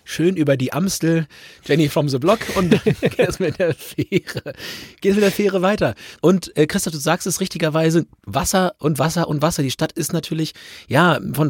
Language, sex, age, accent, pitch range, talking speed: German, male, 30-49, German, 140-175 Hz, 200 wpm